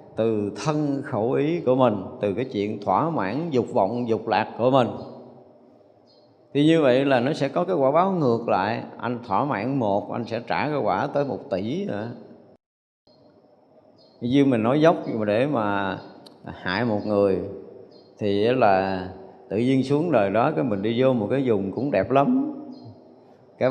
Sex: male